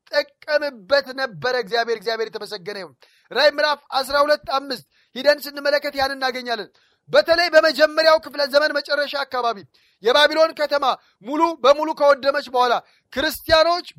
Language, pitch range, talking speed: Amharic, 250-295 Hz, 105 wpm